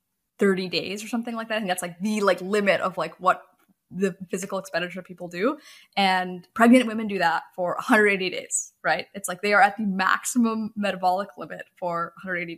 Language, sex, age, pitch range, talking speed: English, female, 10-29, 180-210 Hz, 190 wpm